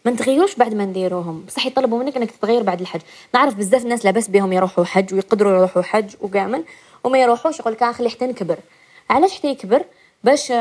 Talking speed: 180 wpm